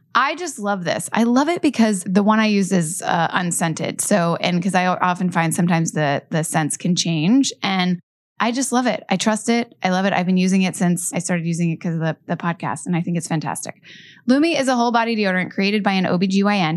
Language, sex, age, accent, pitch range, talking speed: English, female, 20-39, American, 180-245 Hz, 240 wpm